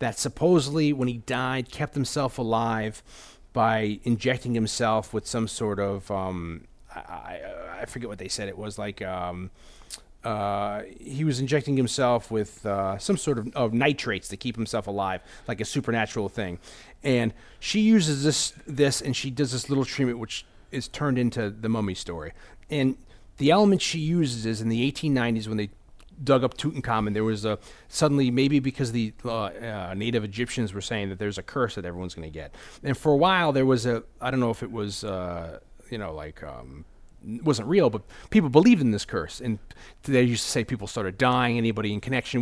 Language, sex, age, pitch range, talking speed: English, male, 30-49, 105-135 Hz, 195 wpm